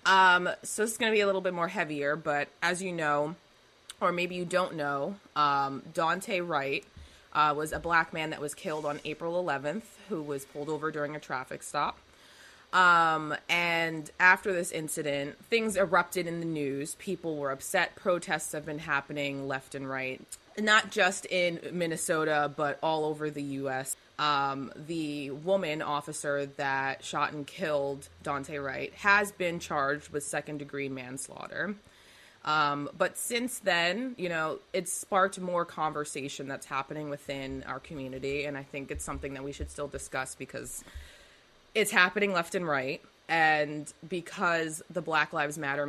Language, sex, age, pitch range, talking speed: English, female, 20-39, 140-175 Hz, 160 wpm